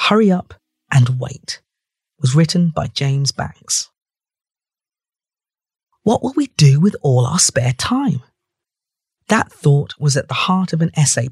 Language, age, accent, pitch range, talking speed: English, 40-59, British, 140-195 Hz, 145 wpm